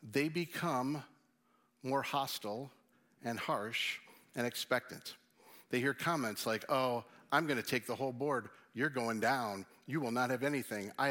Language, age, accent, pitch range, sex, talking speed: English, 50-69, American, 135-180 Hz, male, 155 wpm